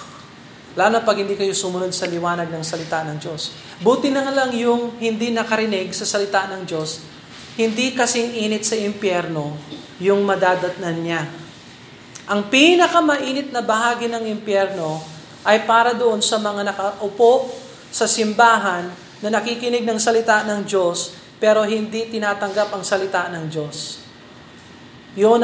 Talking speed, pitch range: 140 wpm, 185-240 Hz